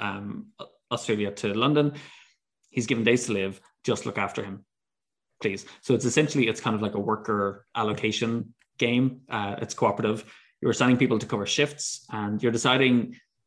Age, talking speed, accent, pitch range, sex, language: 20-39, 165 wpm, Irish, 105-125 Hz, male, English